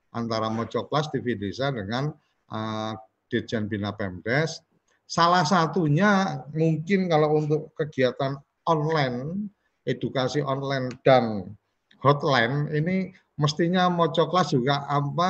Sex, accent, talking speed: male, native, 100 wpm